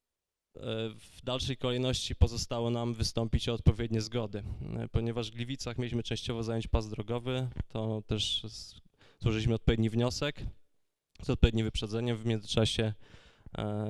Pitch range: 110-120 Hz